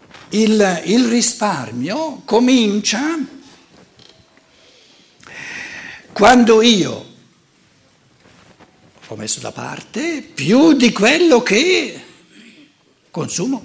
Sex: male